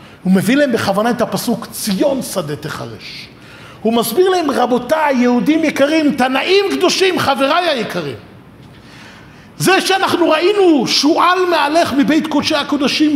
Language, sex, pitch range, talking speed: Hebrew, male, 205-310 Hz, 125 wpm